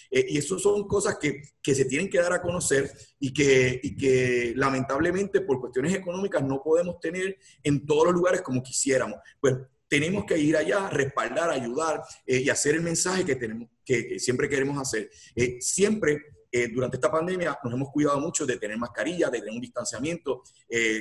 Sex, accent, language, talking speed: male, Venezuelan, Spanish, 190 wpm